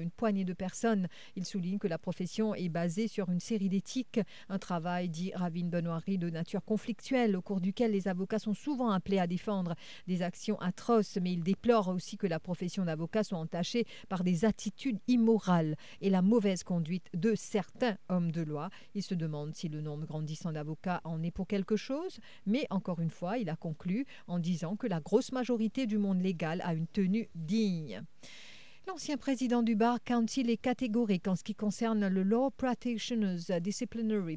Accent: French